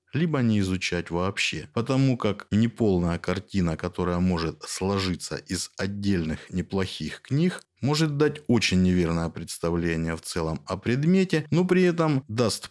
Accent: native